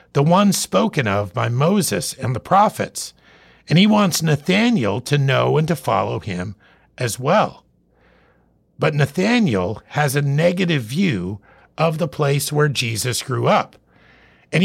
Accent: American